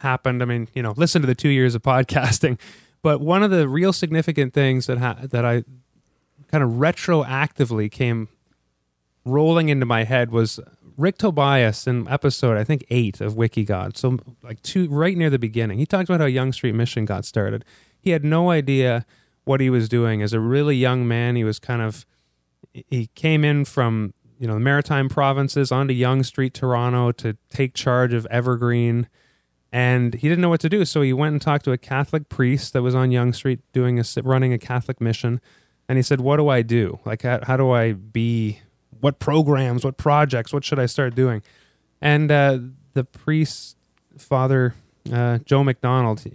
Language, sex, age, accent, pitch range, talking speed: English, male, 20-39, American, 115-140 Hz, 195 wpm